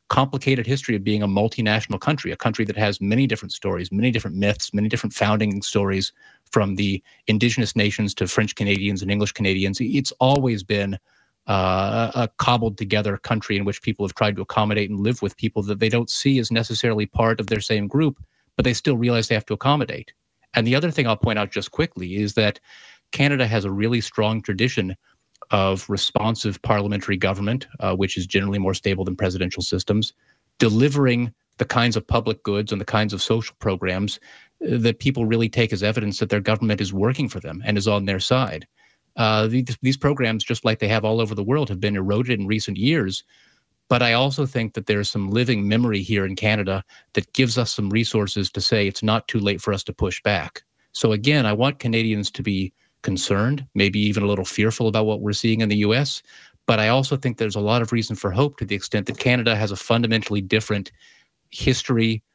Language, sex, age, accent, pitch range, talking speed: English, male, 30-49, American, 100-120 Hz, 210 wpm